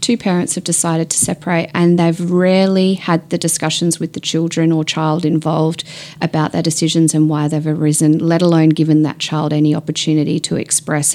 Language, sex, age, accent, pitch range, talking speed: English, female, 30-49, Australian, 155-190 Hz, 185 wpm